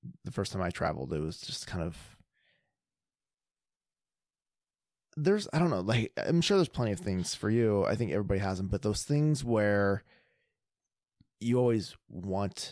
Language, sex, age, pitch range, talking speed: English, male, 20-39, 90-120 Hz, 165 wpm